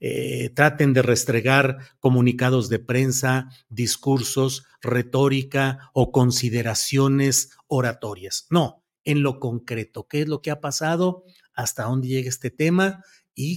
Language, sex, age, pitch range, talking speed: Spanish, male, 50-69, 125-170 Hz, 125 wpm